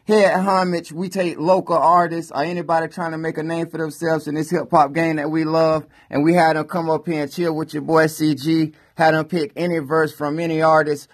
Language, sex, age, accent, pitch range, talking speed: English, male, 20-39, American, 135-160 Hz, 235 wpm